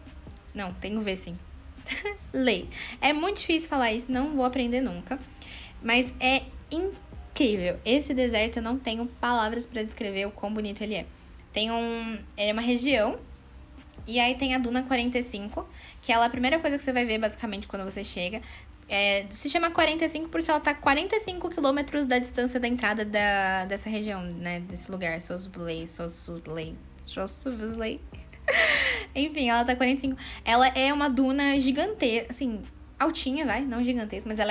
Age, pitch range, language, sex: 10-29, 215-270 Hz, Portuguese, female